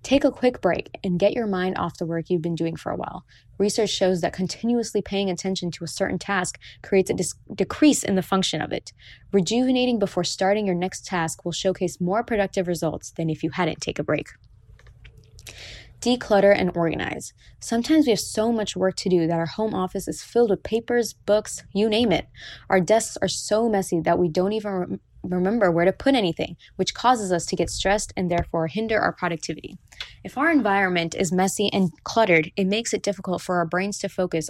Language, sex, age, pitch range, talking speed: English, female, 20-39, 170-205 Hz, 205 wpm